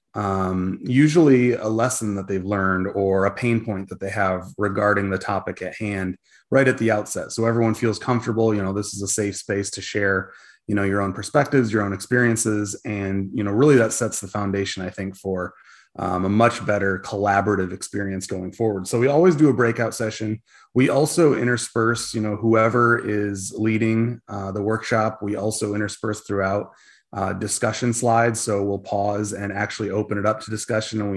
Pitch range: 100-115 Hz